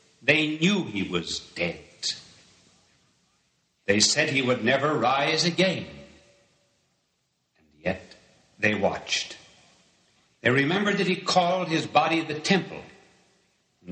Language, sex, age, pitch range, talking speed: English, male, 60-79, 115-155 Hz, 110 wpm